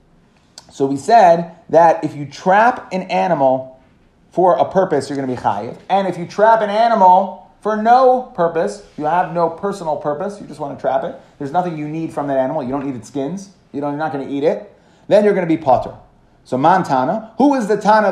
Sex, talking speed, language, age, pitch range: male, 230 wpm, English, 30-49, 150-195 Hz